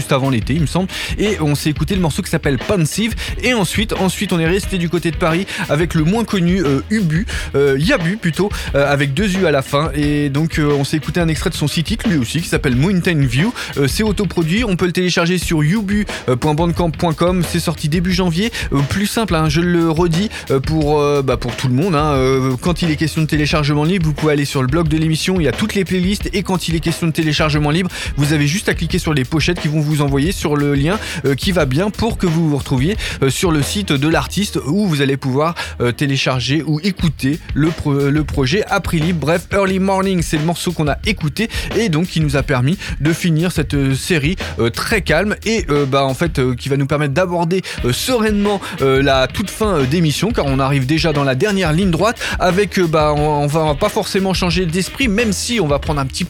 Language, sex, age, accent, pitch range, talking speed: French, male, 20-39, French, 145-185 Hz, 230 wpm